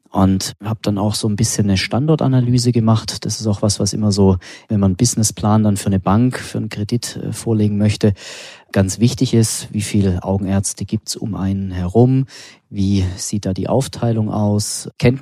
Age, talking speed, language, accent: 30-49, 190 wpm, German, German